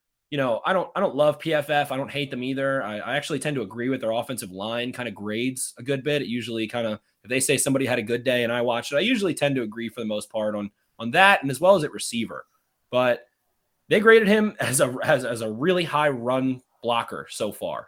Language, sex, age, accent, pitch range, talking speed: English, male, 20-39, American, 120-155 Hz, 260 wpm